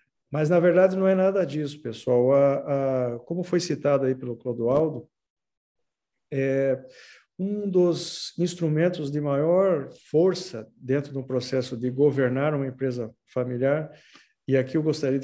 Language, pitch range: Portuguese, 130-170 Hz